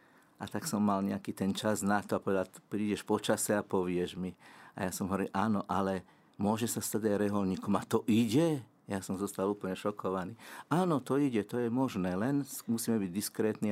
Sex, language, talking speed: male, Slovak, 200 wpm